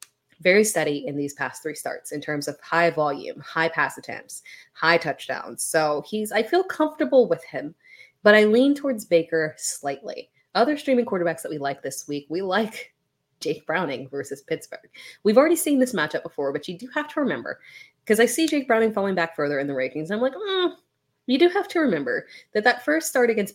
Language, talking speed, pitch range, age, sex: English, 205 wpm, 145-245 Hz, 20-39, female